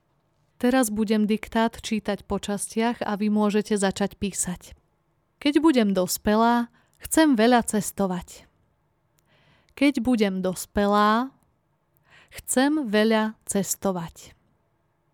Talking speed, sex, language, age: 90 wpm, female, Slovak, 20-39